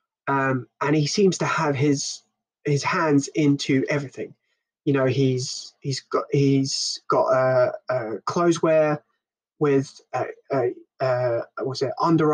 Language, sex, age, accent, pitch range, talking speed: English, male, 20-39, British, 135-165 Hz, 135 wpm